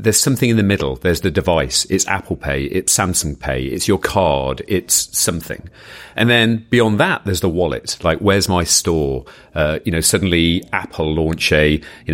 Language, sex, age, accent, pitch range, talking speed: English, male, 40-59, British, 85-105 Hz, 190 wpm